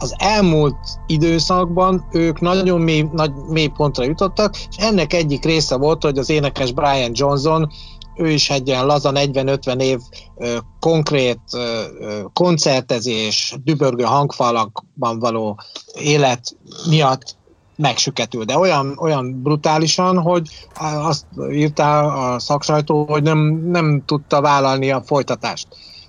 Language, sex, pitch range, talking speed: Hungarian, male, 130-155 Hz, 120 wpm